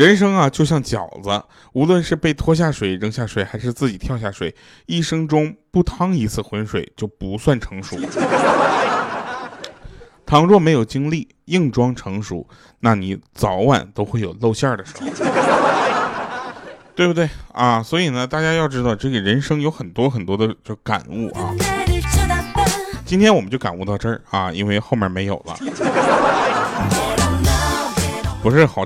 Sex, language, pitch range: male, Chinese, 100-135 Hz